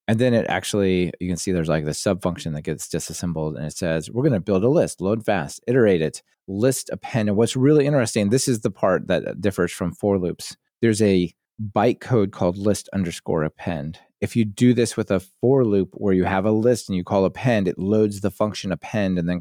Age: 30-49